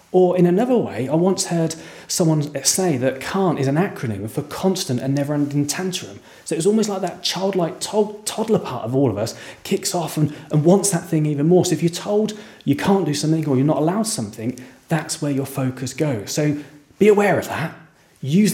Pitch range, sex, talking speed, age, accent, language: 140-180 Hz, male, 215 wpm, 30-49, British, English